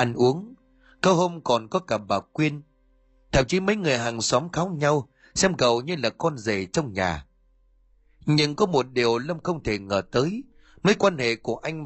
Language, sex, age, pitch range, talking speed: Vietnamese, male, 30-49, 110-160 Hz, 195 wpm